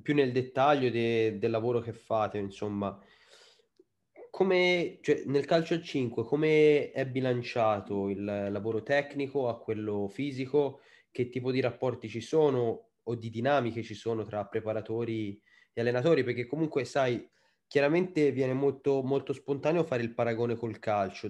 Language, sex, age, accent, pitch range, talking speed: Italian, male, 20-39, native, 115-135 Hz, 145 wpm